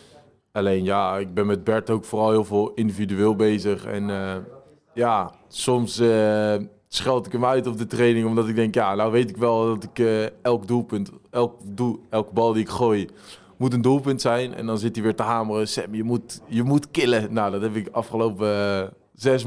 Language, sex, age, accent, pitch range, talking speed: Dutch, male, 20-39, Dutch, 100-115 Hz, 200 wpm